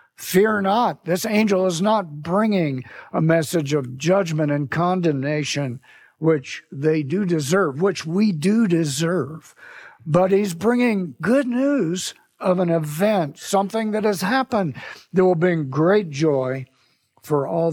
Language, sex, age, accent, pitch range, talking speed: English, male, 60-79, American, 135-185 Hz, 135 wpm